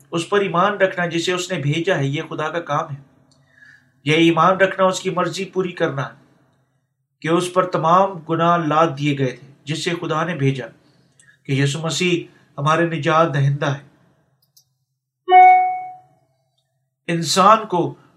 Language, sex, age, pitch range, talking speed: Urdu, male, 50-69, 140-175 Hz, 55 wpm